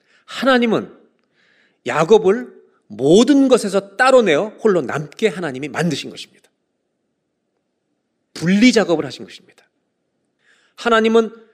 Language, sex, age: Korean, male, 40-59